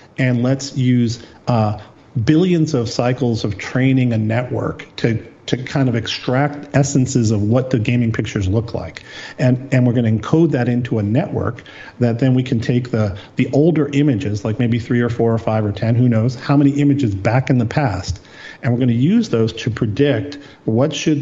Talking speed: 200 wpm